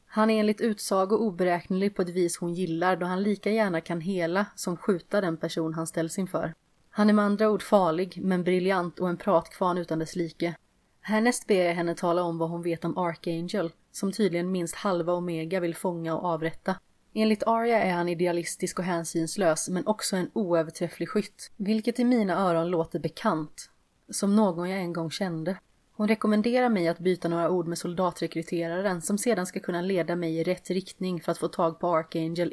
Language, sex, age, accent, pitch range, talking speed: Swedish, female, 30-49, native, 170-195 Hz, 195 wpm